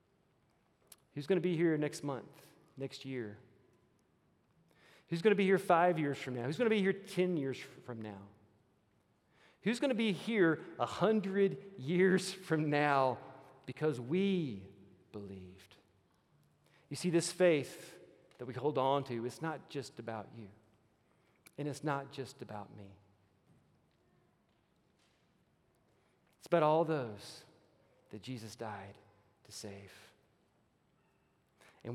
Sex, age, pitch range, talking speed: male, 40-59, 110-155 Hz, 130 wpm